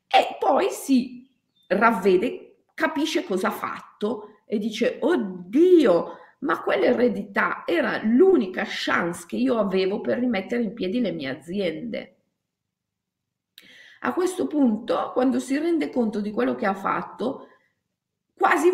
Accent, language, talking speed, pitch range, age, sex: native, Italian, 125 wpm, 205-290 Hz, 40-59, female